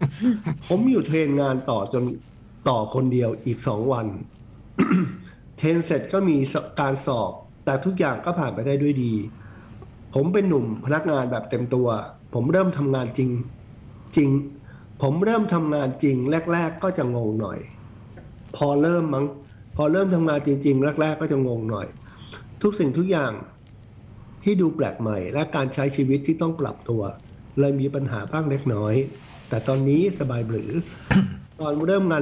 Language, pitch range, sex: Thai, 115-155 Hz, male